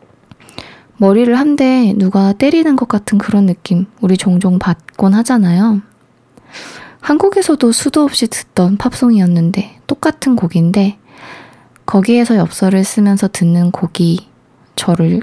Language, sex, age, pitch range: Korean, female, 20-39, 180-220 Hz